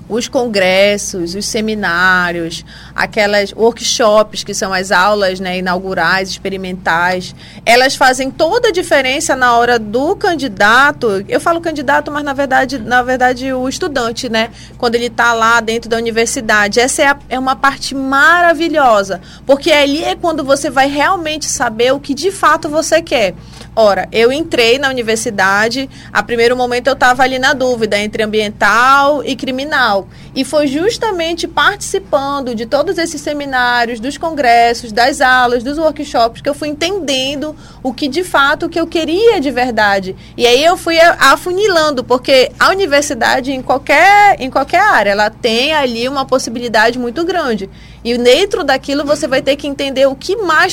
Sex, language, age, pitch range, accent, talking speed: female, Portuguese, 30-49, 230-295 Hz, Brazilian, 160 wpm